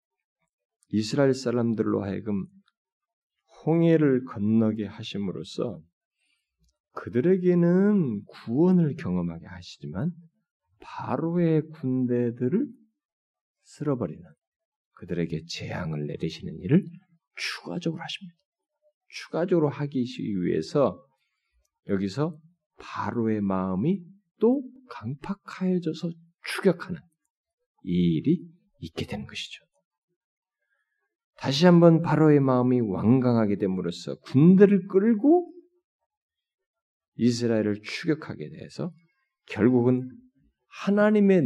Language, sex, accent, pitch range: Korean, male, native, 115-190 Hz